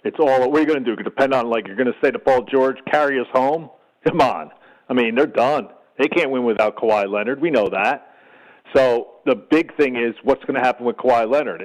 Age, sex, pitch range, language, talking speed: 50-69, male, 120-155 Hz, English, 260 wpm